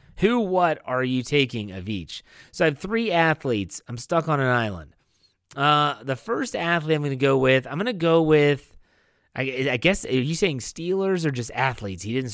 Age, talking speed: 30-49, 210 wpm